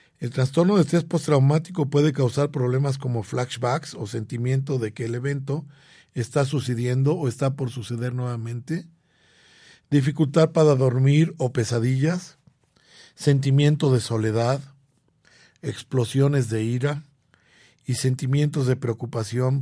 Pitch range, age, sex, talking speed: 120-150 Hz, 50-69, male, 115 wpm